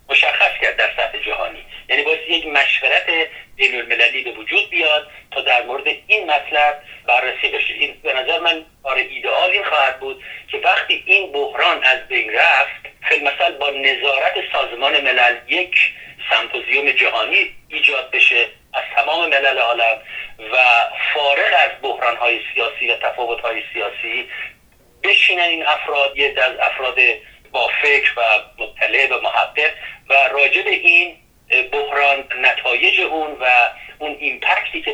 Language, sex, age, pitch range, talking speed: Persian, male, 50-69, 130-175 Hz, 140 wpm